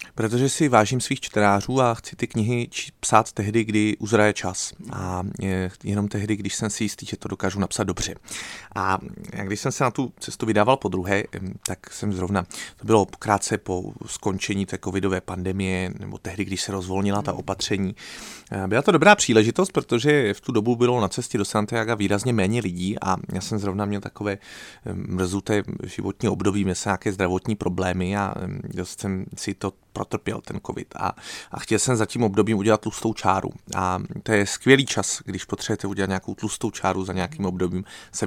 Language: Czech